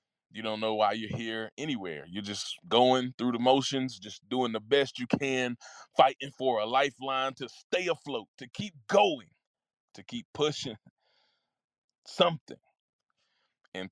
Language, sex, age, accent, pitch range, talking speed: English, male, 20-39, American, 110-145 Hz, 145 wpm